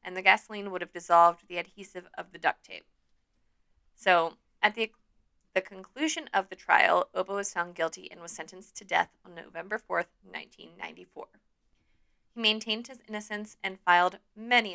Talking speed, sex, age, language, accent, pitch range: 165 wpm, female, 20-39, English, American, 175-210 Hz